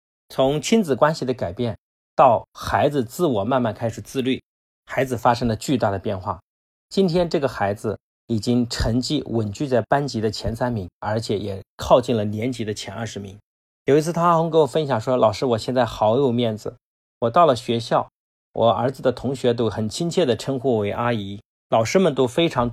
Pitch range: 105-135 Hz